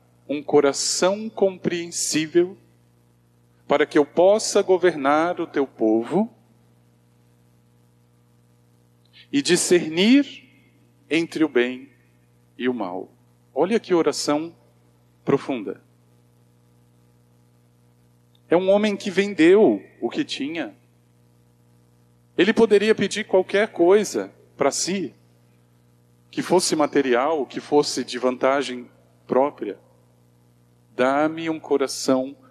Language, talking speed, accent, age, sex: Portuguese, 90 wpm, Brazilian, 40-59, male